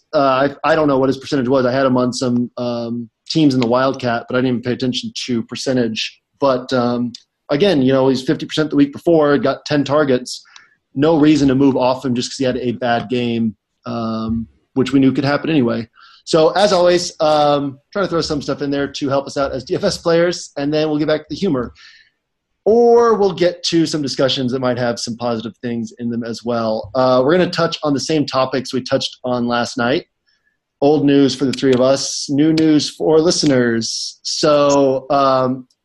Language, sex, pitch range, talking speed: English, male, 125-150 Hz, 215 wpm